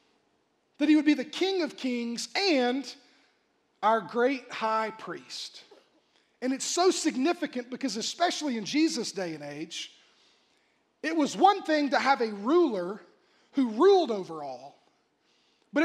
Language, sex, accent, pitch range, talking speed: English, male, American, 235-310 Hz, 140 wpm